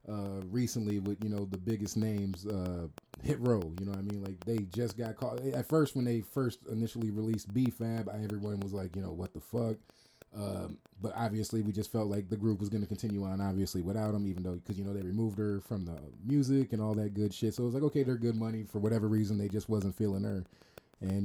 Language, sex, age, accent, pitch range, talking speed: English, male, 30-49, American, 100-115 Hz, 245 wpm